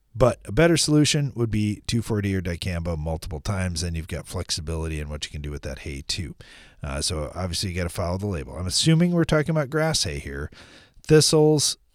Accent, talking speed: American, 210 wpm